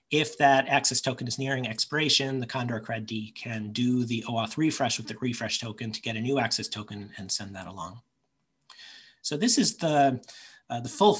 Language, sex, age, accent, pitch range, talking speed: English, male, 40-59, American, 115-140 Hz, 195 wpm